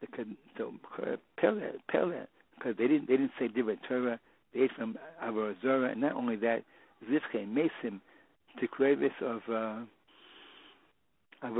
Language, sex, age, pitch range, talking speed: English, male, 60-79, 110-140 Hz, 125 wpm